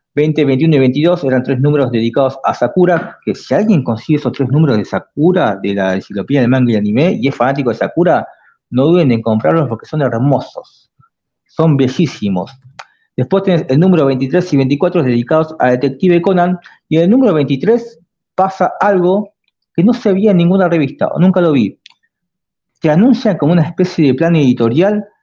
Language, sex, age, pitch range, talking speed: Spanish, male, 40-59, 135-185 Hz, 185 wpm